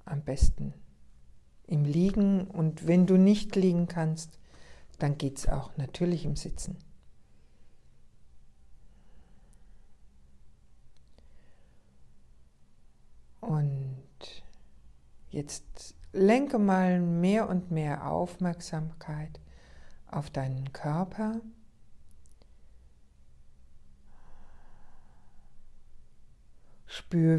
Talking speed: 65 wpm